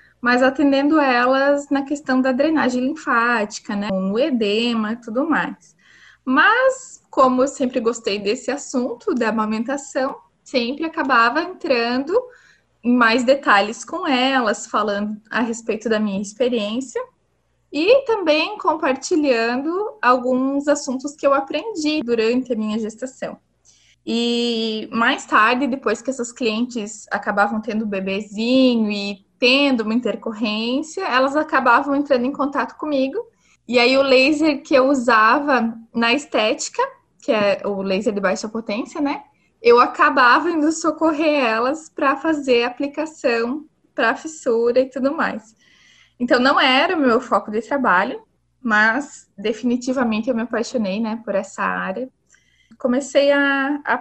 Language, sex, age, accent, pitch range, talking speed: Portuguese, female, 20-39, Brazilian, 230-285 Hz, 135 wpm